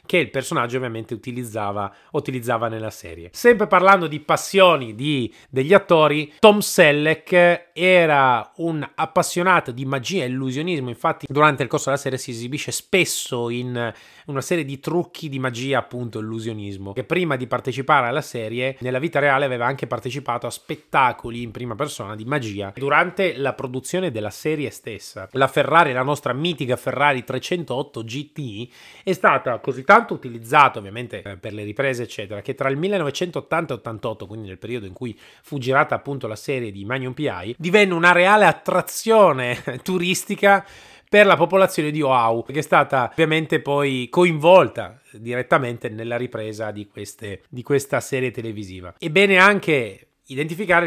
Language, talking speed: Italian, 155 wpm